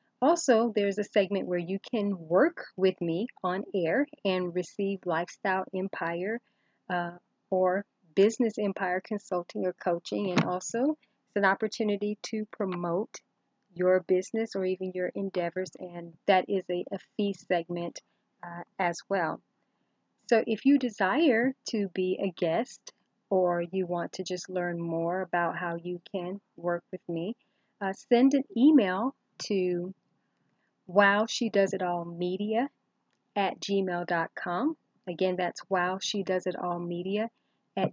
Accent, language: American, English